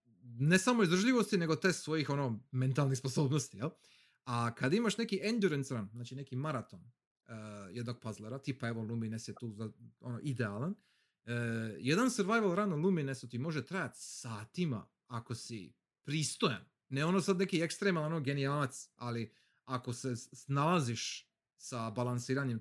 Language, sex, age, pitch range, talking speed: Croatian, male, 30-49, 120-185 Hz, 150 wpm